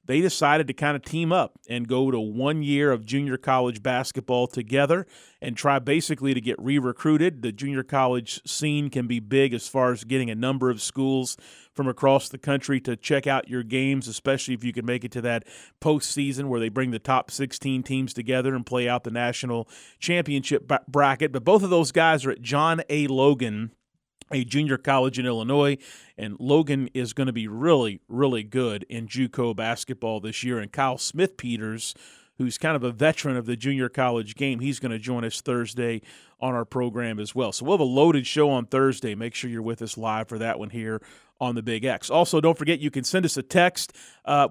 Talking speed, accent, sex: 210 wpm, American, male